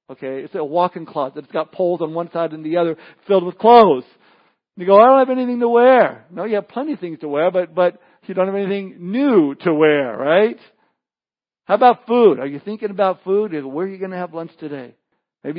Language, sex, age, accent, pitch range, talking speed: English, male, 60-79, American, 150-195 Hz, 235 wpm